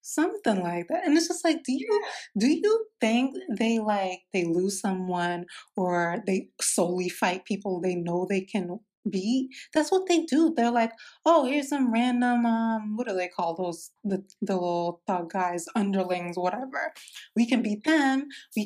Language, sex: English, female